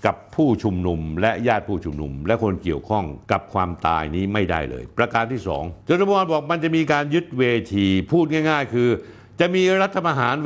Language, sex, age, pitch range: Thai, male, 60-79, 110-150 Hz